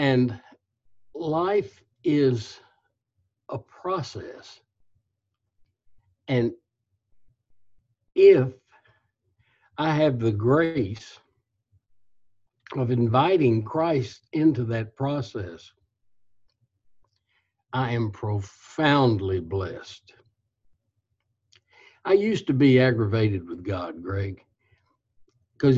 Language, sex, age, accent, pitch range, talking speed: English, male, 60-79, American, 105-135 Hz, 70 wpm